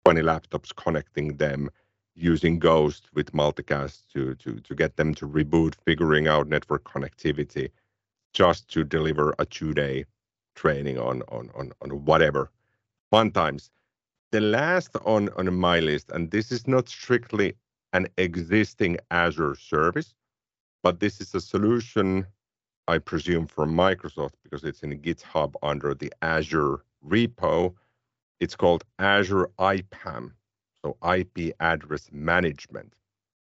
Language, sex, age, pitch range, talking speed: English, male, 50-69, 75-95 Hz, 130 wpm